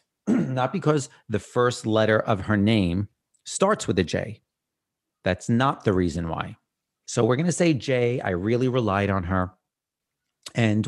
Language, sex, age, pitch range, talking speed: English, male, 40-59, 100-130 Hz, 160 wpm